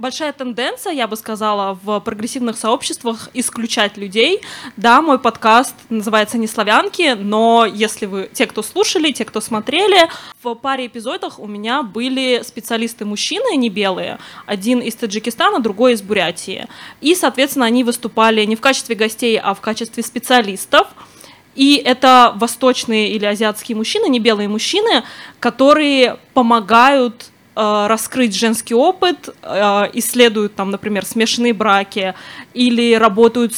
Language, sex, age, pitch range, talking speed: Russian, female, 20-39, 215-255 Hz, 130 wpm